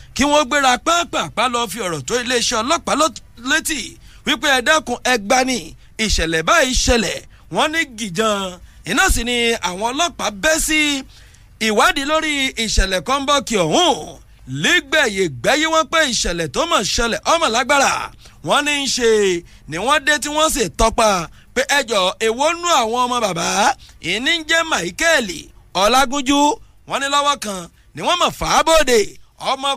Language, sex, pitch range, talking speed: English, male, 225-305 Hz, 165 wpm